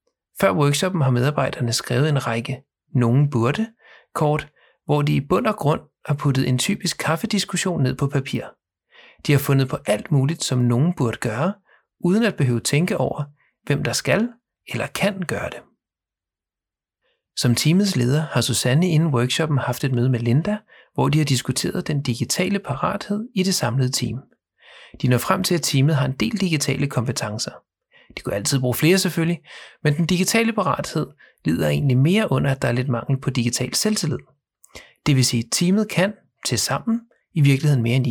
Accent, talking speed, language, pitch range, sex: native, 180 wpm, Danish, 125-180 Hz, male